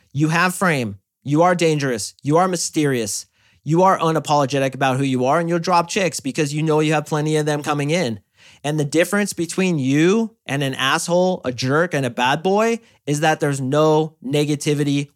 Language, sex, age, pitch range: English, male, 30-49, 130-175 Hz